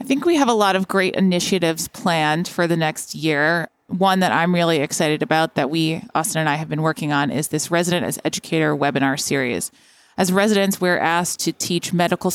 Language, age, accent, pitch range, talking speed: English, 20-39, American, 155-180 Hz, 210 wpm